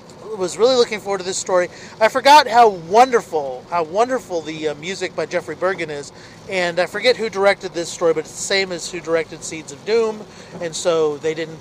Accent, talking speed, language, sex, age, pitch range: American, 210 wpm, English, male, 40-59, 160-205 Hz